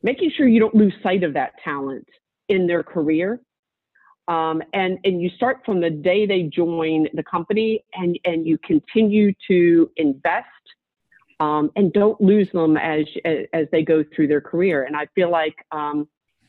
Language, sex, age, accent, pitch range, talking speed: English, female, 40-59, American, 160-205 Hz, 170 wpm